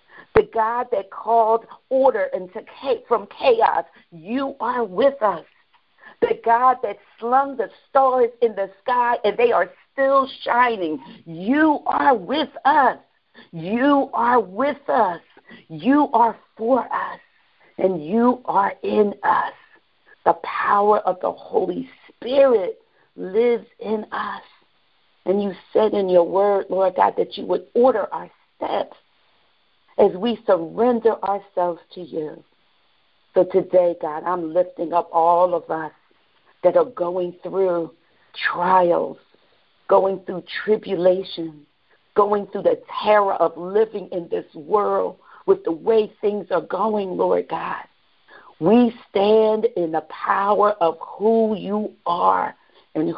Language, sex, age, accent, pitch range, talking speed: English, female, 50-69, American, 180-245 Hz, 130 wpm